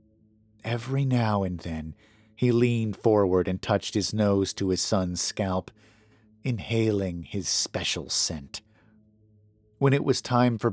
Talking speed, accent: 135 wpm, American